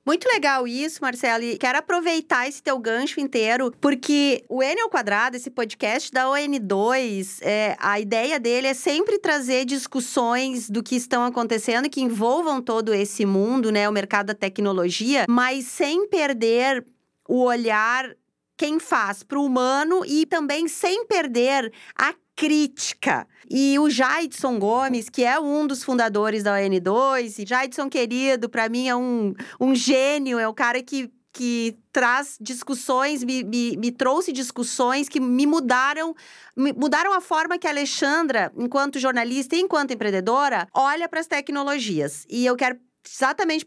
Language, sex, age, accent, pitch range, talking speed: Portuguese, female, 30-49, Brazilian, 235-285 Hz, 155 wpm